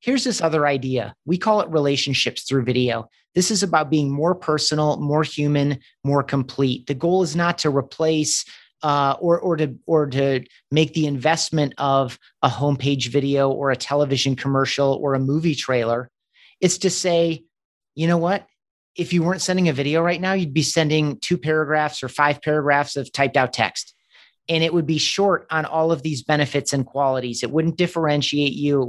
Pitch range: 140-165 Hz